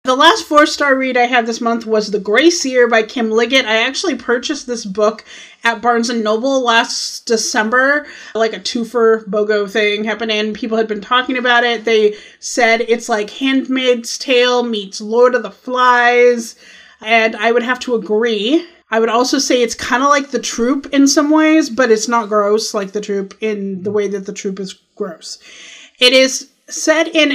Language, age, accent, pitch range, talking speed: English, 30-49, American, 225-270 Hz, 190 wpm